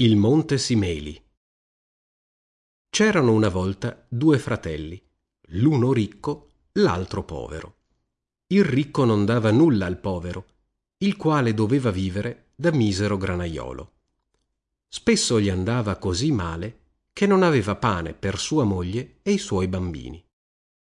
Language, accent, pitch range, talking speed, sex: Italian, native, 90-135 Hz, 120 wpm, male